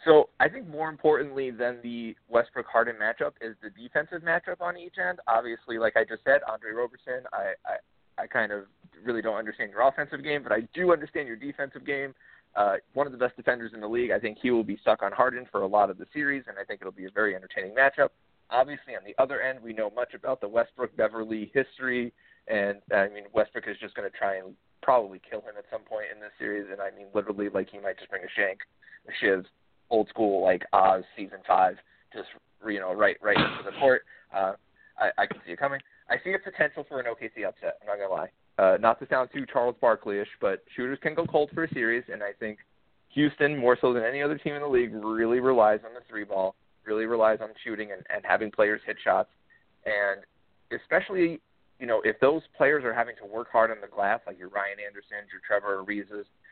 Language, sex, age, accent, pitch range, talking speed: English, male, 30-49, American, 105-140 Hz, 230 wpm